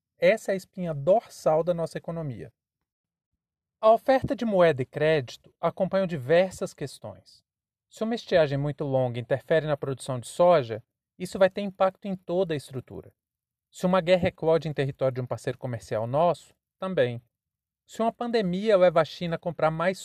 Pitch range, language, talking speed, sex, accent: 135-190 Hz, Portuguese, 170 wpm, male, Brazilian